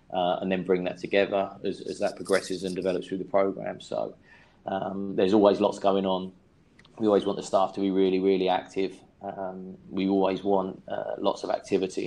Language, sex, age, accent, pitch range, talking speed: English, male, 20-39, British, 90-95 Hz, 200 wpm